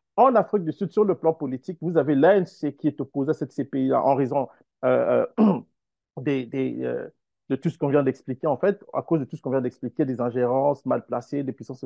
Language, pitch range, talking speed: French, 135-170 Hz, 235 wpm